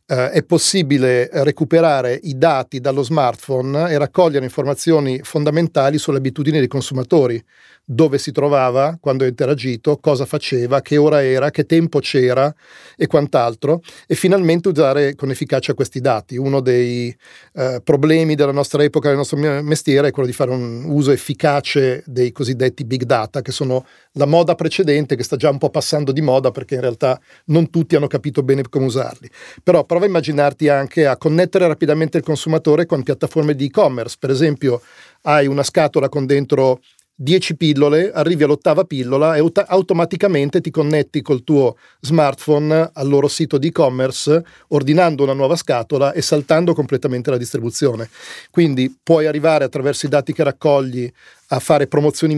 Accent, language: native, Italian